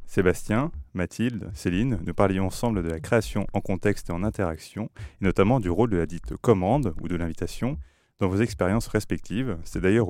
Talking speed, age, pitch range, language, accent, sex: 185 wpm, 30-49, 90-110 Hz, French, French, male